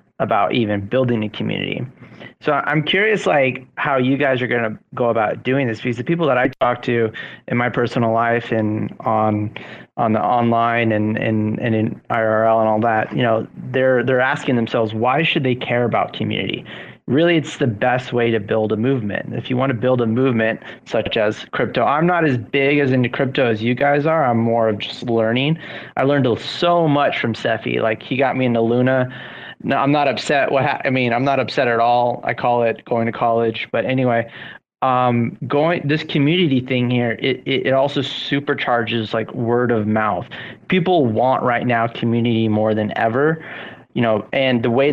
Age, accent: 20-39, American